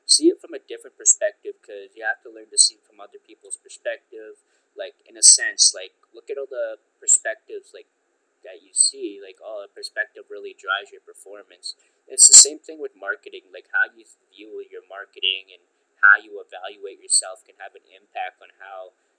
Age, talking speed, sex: 20-39, 195 wpm, male